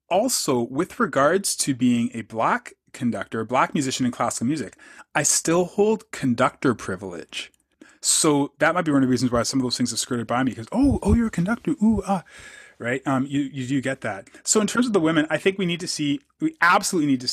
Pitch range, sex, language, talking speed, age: 120-170 Hz, male, English, 230 wpm, 30-49